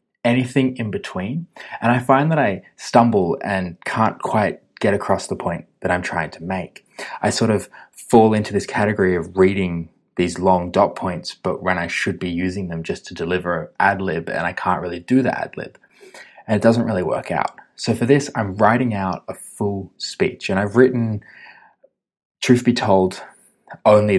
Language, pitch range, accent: English, 95-120 Hz, Australian